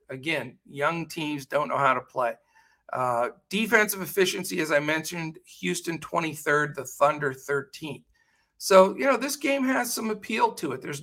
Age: 50-69